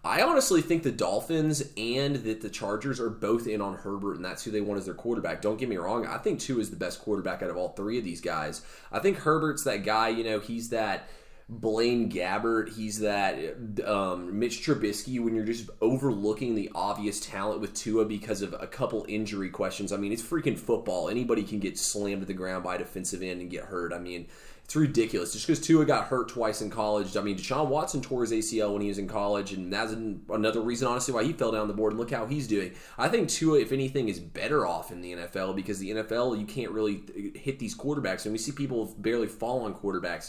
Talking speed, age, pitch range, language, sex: 235 wpm, 20-39, 100-120 Hz, English, male